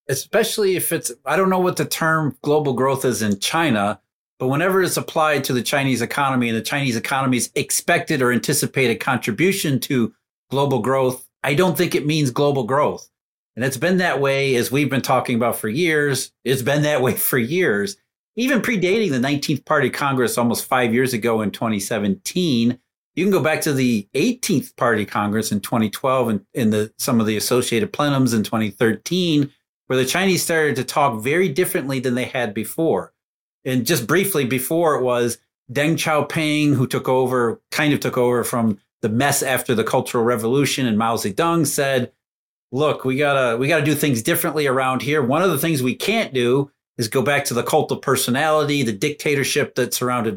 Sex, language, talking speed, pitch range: male, English, 185 wpm, 125-155 Hz